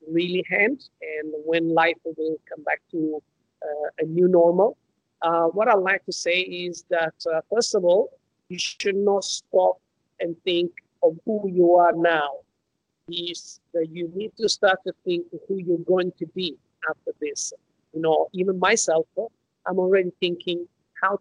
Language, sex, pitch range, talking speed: English, male, 165-195 Hz, 175 wpm